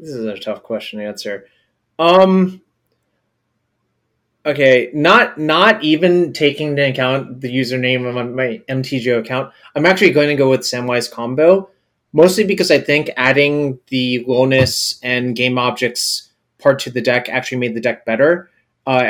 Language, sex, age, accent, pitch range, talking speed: English, male, 30-49, American, 120-145 Hz, 155 wpm